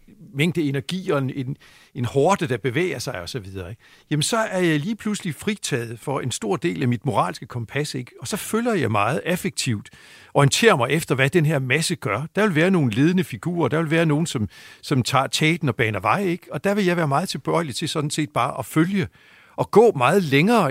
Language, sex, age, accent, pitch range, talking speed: Danish, male, 60-79, native, 130-180 Hz, 215 wpm